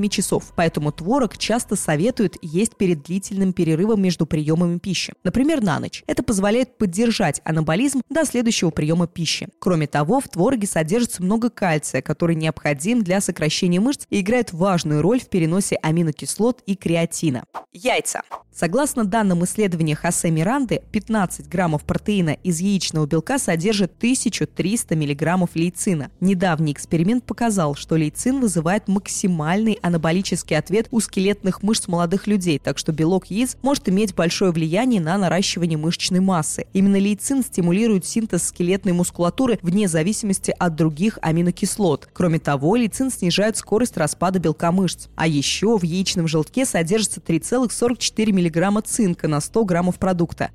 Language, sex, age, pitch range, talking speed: Russian, female, 20-39, 165-215 Hz, 140 wpm